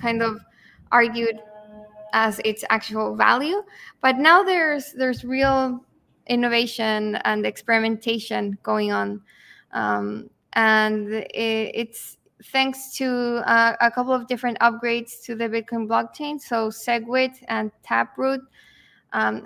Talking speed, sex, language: 115 wpm, female, English